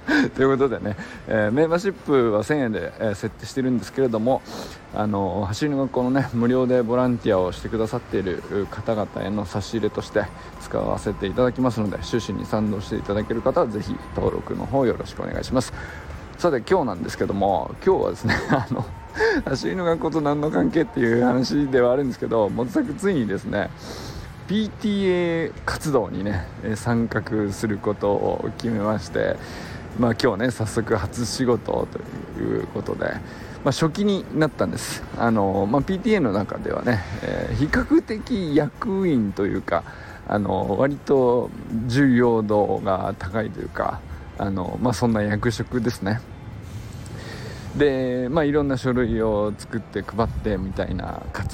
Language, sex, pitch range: Japanese, male, 105-130 Hz